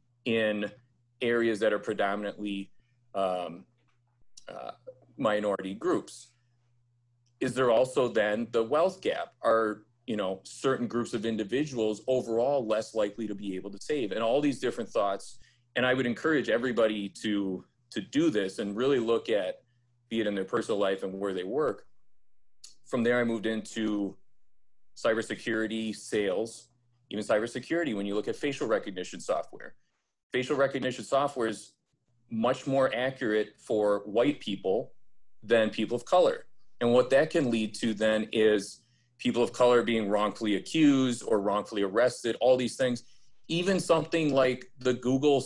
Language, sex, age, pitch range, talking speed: English, male, 30-49, 110-130 Hz, 150 wpm